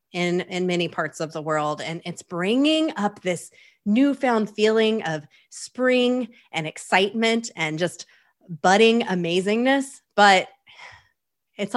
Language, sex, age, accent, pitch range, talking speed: English, female, 20-39, American, 170-215 Hz, 120 wpm